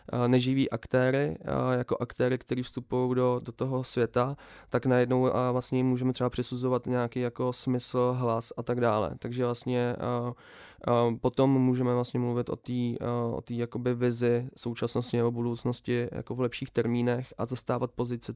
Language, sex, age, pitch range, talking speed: Czech, male, 20-39, 120-125 Hz, 145 wpm